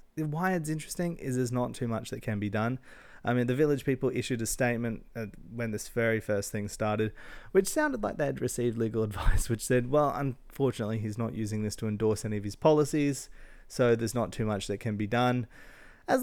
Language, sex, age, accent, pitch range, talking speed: English, male, 20-39, Australian, 105-130 Hz, 215 wpm